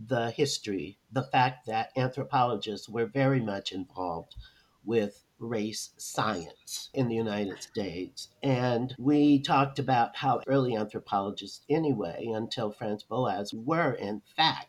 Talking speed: 125 wpm